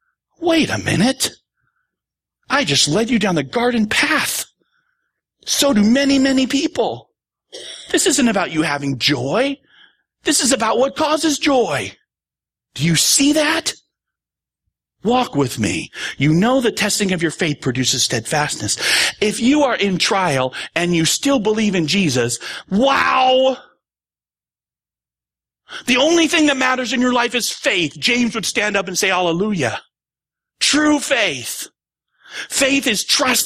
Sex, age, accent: male, 40-59, American